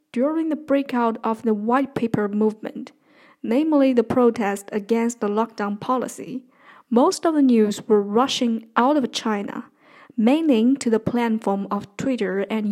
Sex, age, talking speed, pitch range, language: female, 10-29, 145 wpm, 225-275 Hz, English